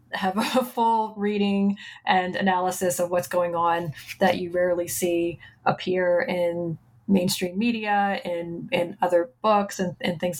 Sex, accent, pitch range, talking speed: female, American, 175-195 Hz, 145 wpm